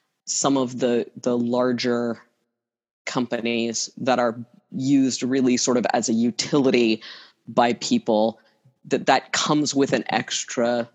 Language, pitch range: English, 120-180 Hz